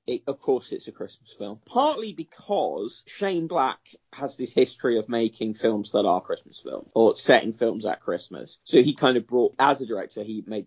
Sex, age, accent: male, 20-39, British